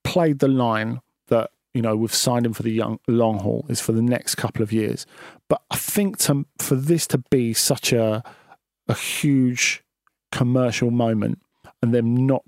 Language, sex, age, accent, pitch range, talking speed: English, male, 40-59, British, 115-135 Hz, 185 wpm